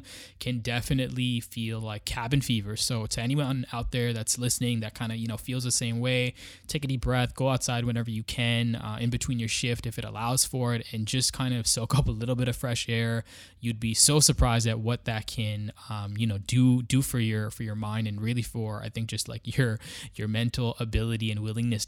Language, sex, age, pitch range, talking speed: English, male, 10-29, 110-125 Hz, 230 wpm